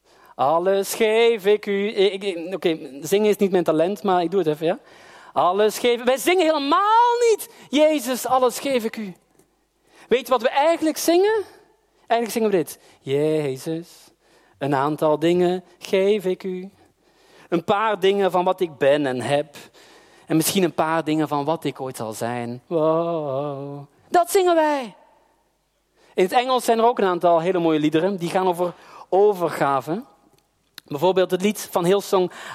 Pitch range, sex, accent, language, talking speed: 165-245 Hz, male, Dutch, Dutch, 160 wpm